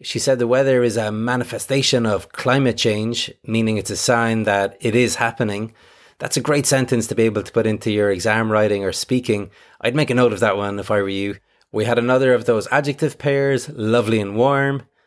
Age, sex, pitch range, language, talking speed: 30-49, male, 105-125 Hz, English, 215 wpm